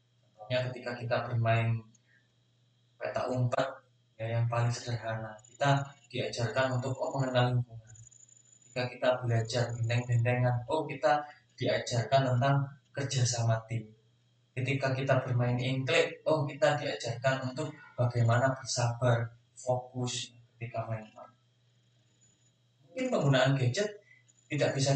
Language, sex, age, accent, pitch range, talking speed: Indonesian, male, 20-39, native, 120-145 Hz, 105 wpm